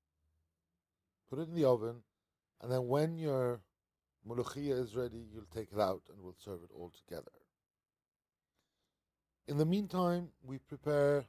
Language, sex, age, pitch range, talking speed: English, male, 50-69, 95-130 Hz, 145 wpm